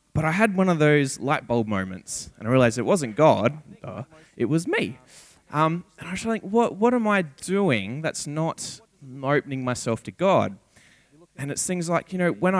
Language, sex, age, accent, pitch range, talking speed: English, male, 20-39, Australian, 120-160 Hz, 200 wpm